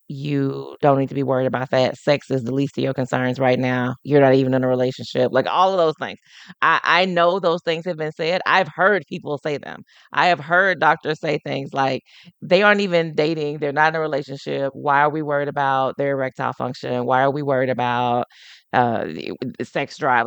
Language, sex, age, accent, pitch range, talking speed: English, female, 30-49, American, 130-155 Hz, 215 wpm